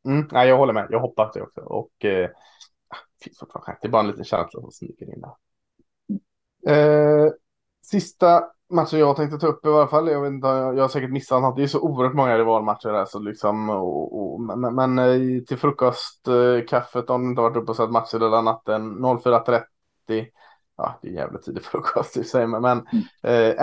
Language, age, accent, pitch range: Swedish, 20-39, Norwegian, 100-130 Hz